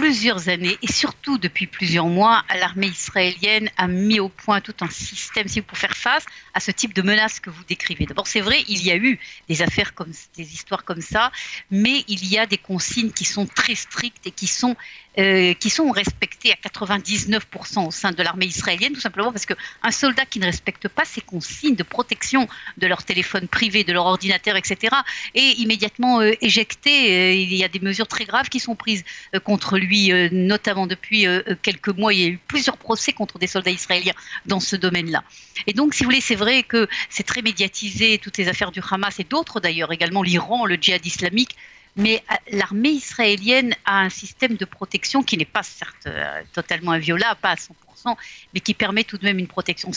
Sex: female